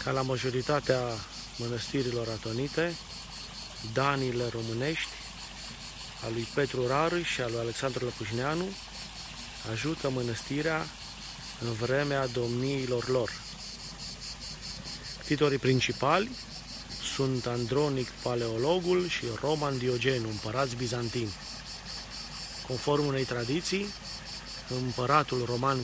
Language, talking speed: Romanian, 85 wpm